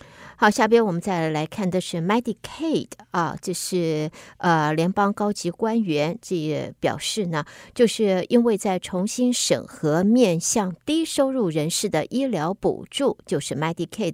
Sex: female